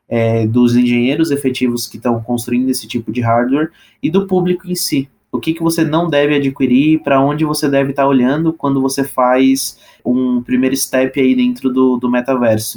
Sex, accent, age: male, Brazilian, 20-39